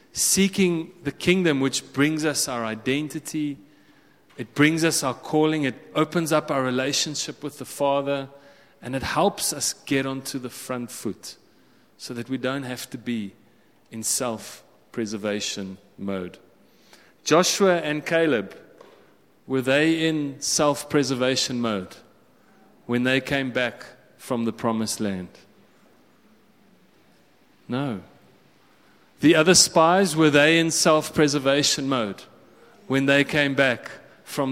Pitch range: 130-165 Hz